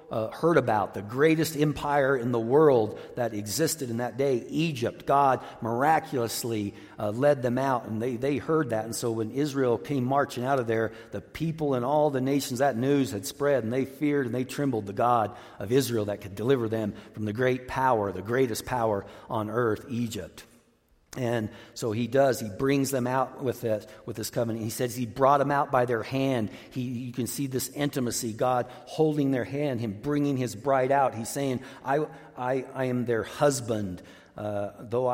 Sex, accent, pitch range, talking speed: male, American, 110-135 Hz, 195 wpm